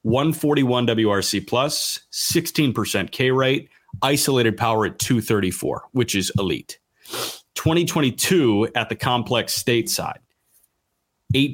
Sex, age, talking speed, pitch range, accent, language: male, 30-49, 100 wpm, 105-135 Hz, American, English